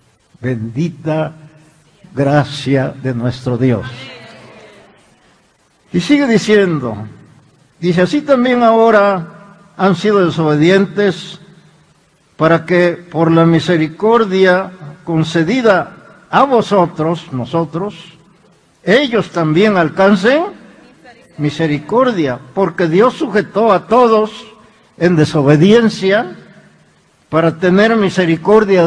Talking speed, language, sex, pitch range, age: 80 wpm, Spanish, male, 155-195 Hz, 60-79